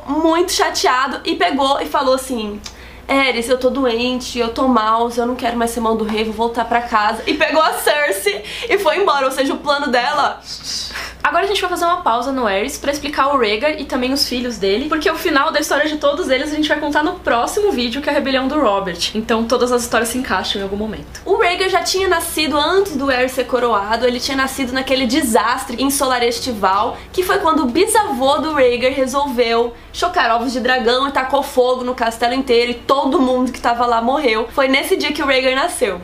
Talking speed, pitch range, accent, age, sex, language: 225 wpm, 245-335 Hz, Brazilian, 20-39, female, Portuguese